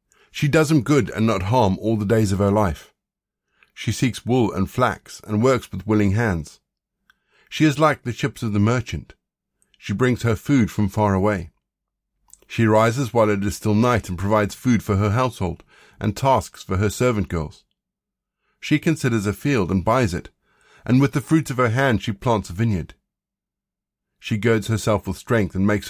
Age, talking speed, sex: 50-69, 190 wpm, male